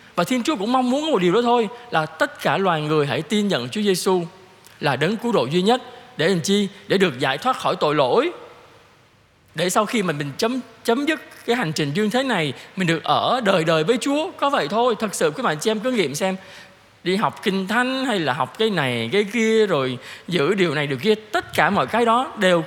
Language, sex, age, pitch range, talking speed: Vietnamese, male, 20-39, 165-245 Hz, 245 wpm